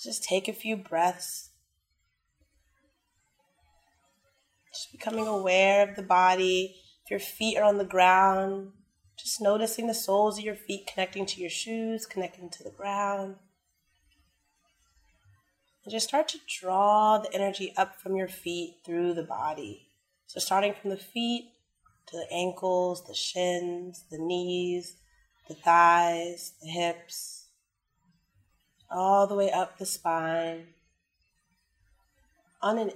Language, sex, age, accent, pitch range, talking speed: English, female, 20-39, American, 175-200 Hz, 125 wpm